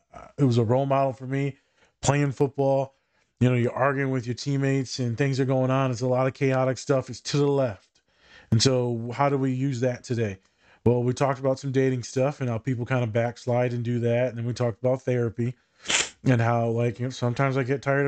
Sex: male